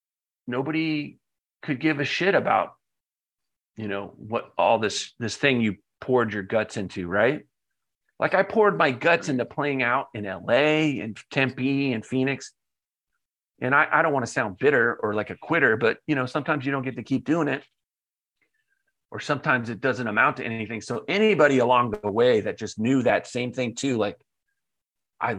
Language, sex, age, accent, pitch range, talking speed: English, male, 40-59, American, 110-145 Hz, 180 wpm